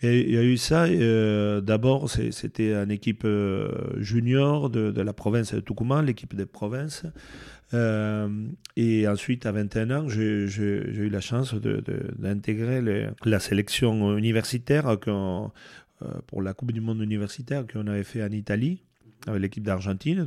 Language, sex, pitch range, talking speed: French, male, 105-130 Hz, 170 wpm